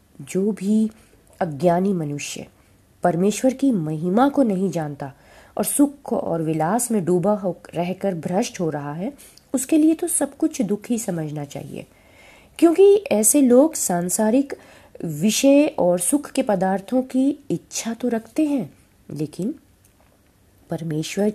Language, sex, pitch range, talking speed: Hindi, female, 155-220 Hz, 130 wpm